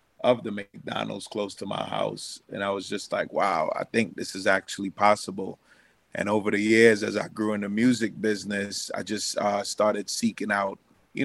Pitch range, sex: 100-110 Hz, male